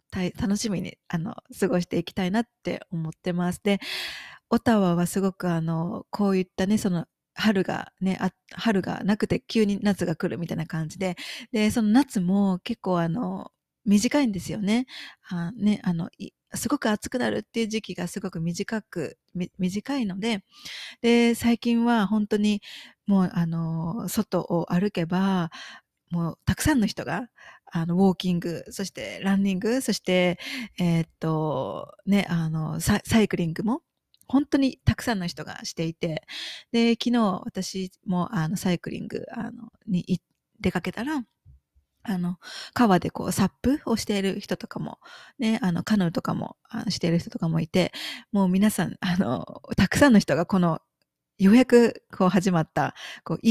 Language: Japanese